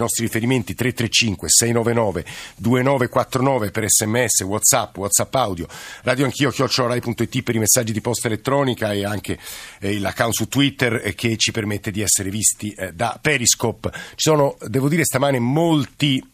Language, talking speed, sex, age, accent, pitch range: Italian, 145 wpm, male, 50-69, native, 115-140 Hz